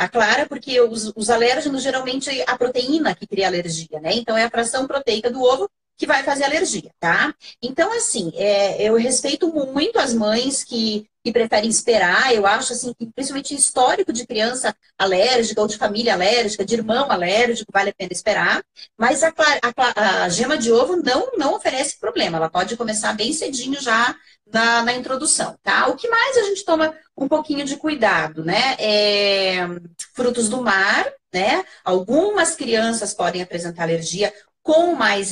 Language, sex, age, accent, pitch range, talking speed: Portuguese, female, 30-49, Brazilian, 195-275 Hz, 170 wpm